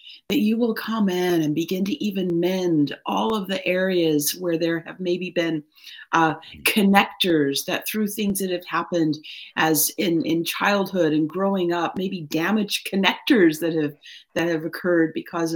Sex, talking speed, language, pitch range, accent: female, 165 wpm, English, 150-185 Hz, American